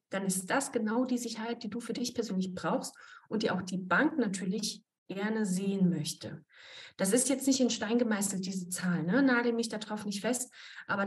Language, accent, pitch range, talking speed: German, German, 200-250 Hz, 195 wpm